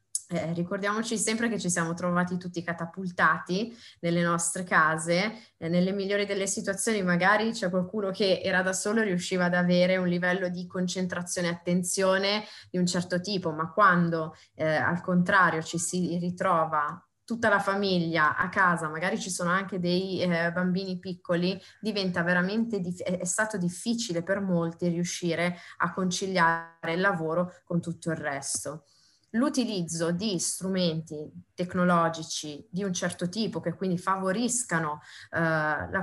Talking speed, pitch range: 145 wpm, 165-190 Hz